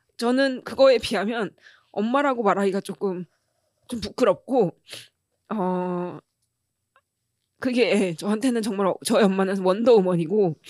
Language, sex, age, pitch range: Korean, female, 20-39, 190-250 Hz